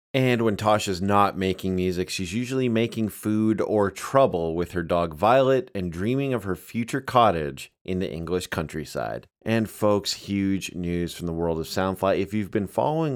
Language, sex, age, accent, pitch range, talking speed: English, male, 30-49, American, 85-105 Hz, 180 wpm